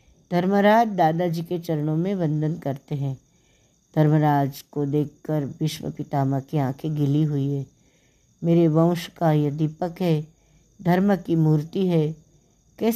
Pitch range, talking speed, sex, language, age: 150-195 Hz, 135 wpm, female, Hindi, 60-79